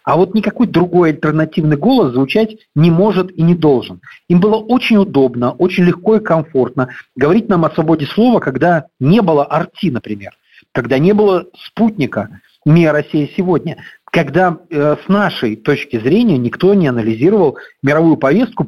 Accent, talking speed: native, 155 wpm